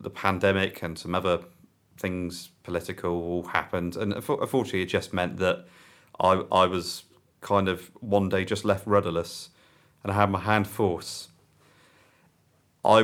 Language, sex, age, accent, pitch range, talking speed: English, male, 30-49, British, 90-110 Hz, 145 wpm